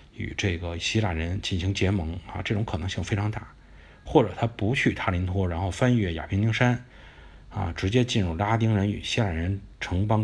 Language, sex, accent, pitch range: Chinese, male, native, 80-105 Hz